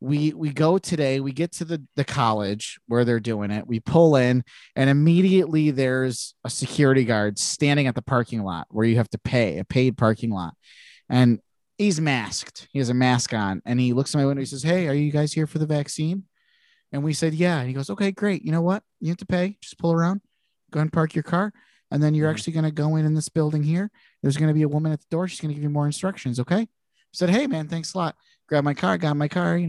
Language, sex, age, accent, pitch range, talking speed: English, male, 30-49, American, 135-175 Hz, 260 wpm